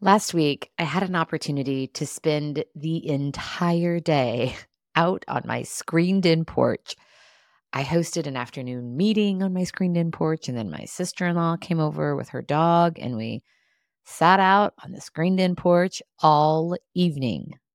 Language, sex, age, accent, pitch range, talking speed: English, female, 30-49, American, 140-175 Hz, 150 wpm